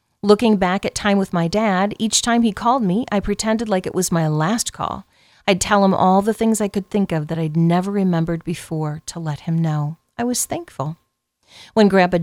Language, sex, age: English, female, 40-59